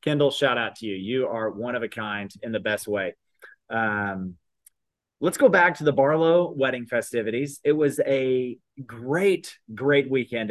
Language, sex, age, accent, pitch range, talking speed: English, male, 30-49, American, 120-145 Hz, 170 wpm